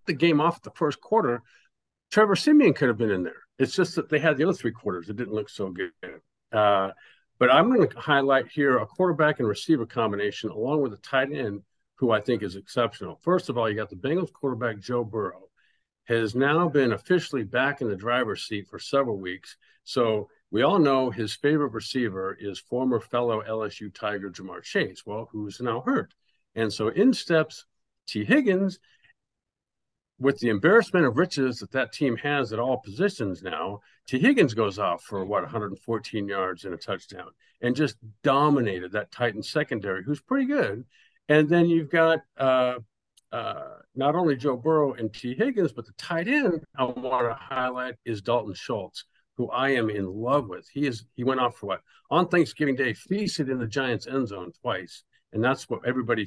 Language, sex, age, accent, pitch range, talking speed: English, male, 50-69, American, 110-150 Hz, 190 wpm